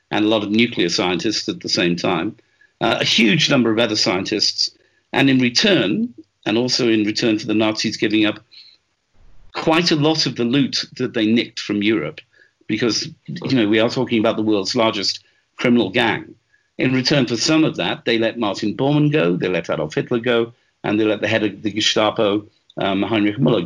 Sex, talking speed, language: male, 200 wpm, English